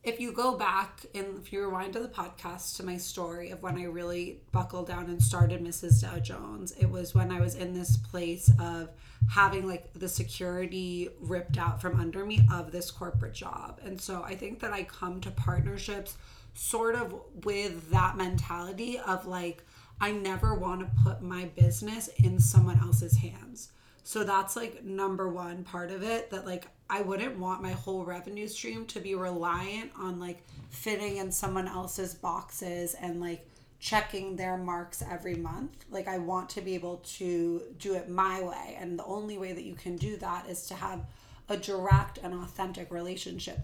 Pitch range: 170-195 Hz